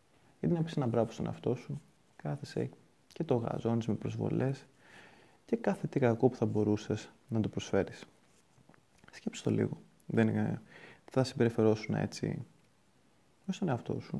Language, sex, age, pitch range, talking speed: Greek, male, 20-39, 110-155 Hz, 150 wpm